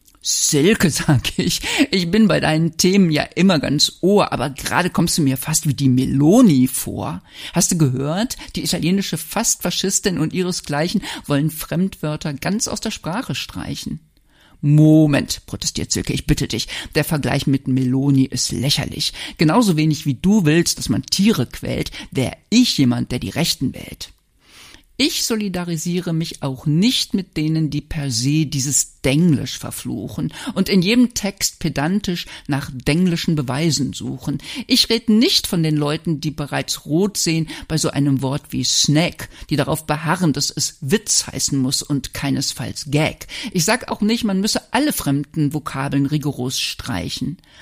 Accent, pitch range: German, 140-195 Hz